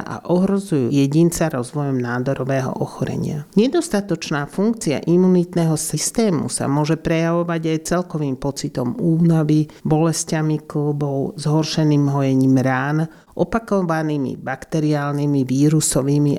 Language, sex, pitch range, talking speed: Slovak, male, 140-165 Hz, 90 wpm